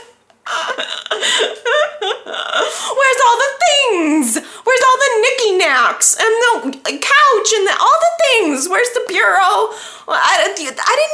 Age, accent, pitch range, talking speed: 20-39, American, 310-465 Hz, 125 wpm